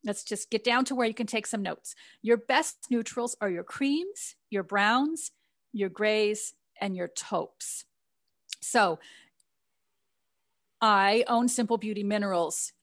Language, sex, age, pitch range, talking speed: English, female, 40-59, 195-235 Hz, 140 wpm